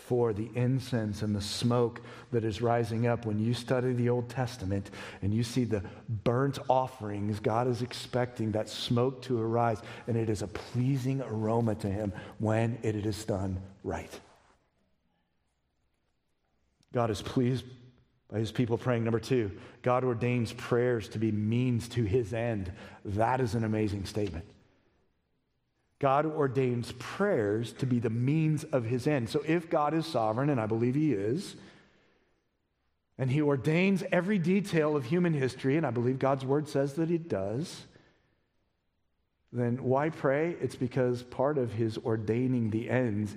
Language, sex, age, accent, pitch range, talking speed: English, male, 40-59, American, 110-130 Hz, 155 wpm